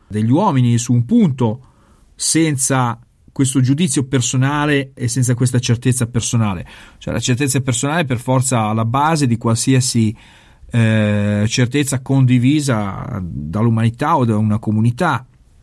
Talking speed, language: 125 wpm, Italian